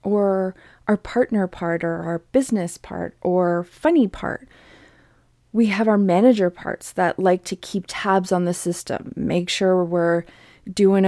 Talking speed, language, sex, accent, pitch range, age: 150 wpm, English, female, American, 180-230 Hz, 30-49